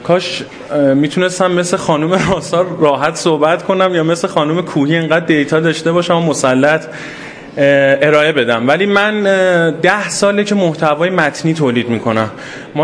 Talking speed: 135 wpm